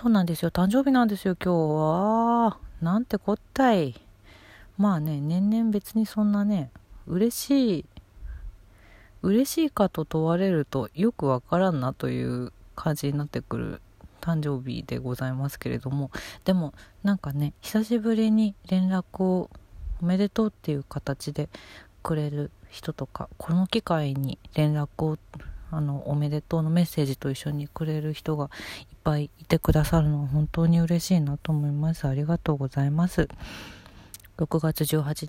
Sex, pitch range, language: female, 130-175 Hz, Japanese